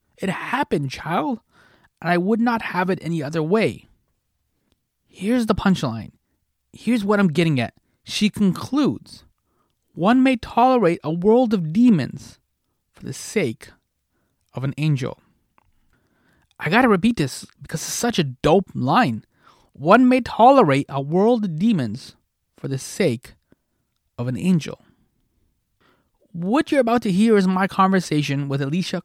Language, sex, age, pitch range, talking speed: English, male, 30-49, 135-215 Hz, 140 wpm